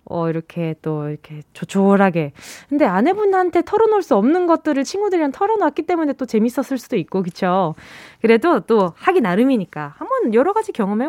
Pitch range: 190-310 Hz